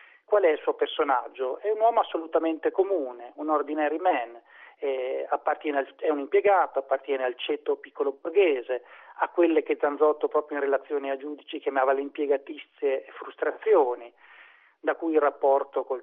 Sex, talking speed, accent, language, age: male, 155 wpm, native, Italian, 40-59